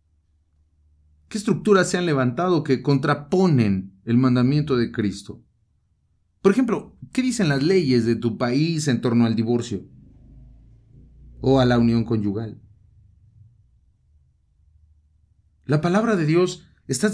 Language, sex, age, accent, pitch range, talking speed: English, male, 40-59, Mexican, 90-145 Hz, 120 wpm